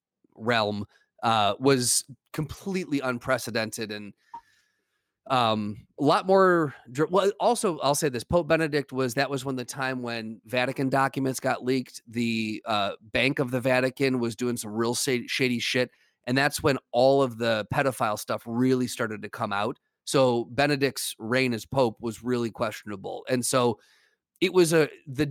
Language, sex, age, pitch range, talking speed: English, male, 30-49, 115-145 Hz, 160 wpm